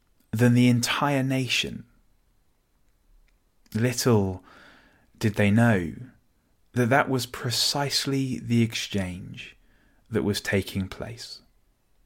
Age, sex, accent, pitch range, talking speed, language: 20-39, male, British, 100-120 Hz, 90 wpm, English